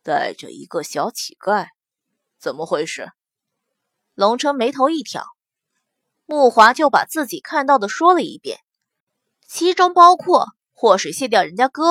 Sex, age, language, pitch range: female, 20-39, Chinese, 235-345 Hz